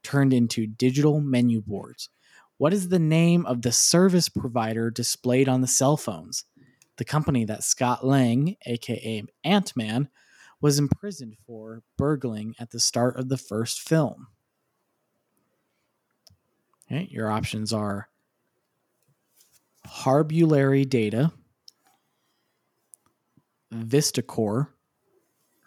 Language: English